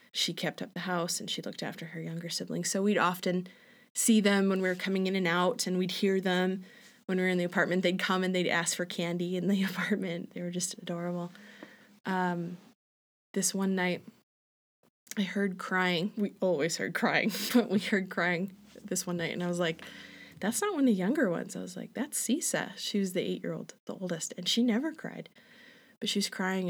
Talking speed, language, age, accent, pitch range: 215 wpm, English, 20-39, American, 180-220 Hz